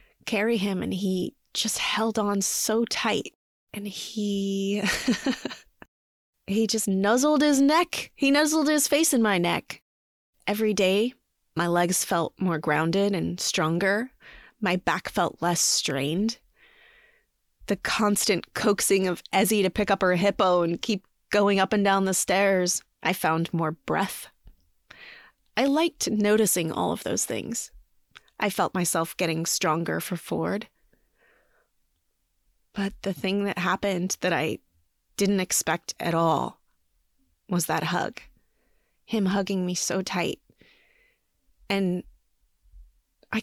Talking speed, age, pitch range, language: 130 wpm, 20-39, 170-220 Hz, English